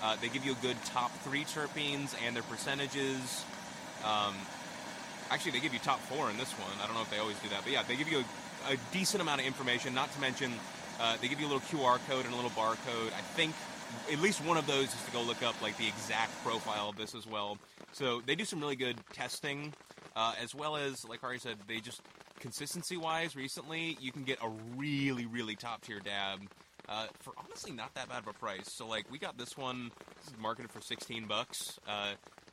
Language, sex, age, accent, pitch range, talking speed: English, male, 20-39, American, 115-145 Hz, 230 wpm